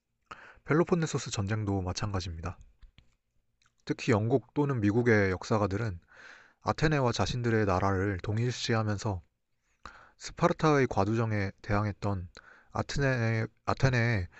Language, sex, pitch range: Korean, male, 100-130 Hz